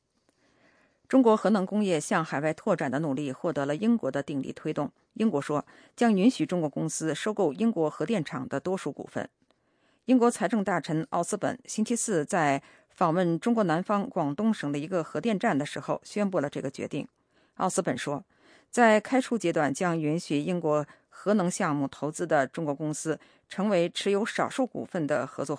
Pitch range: 150-205 Hz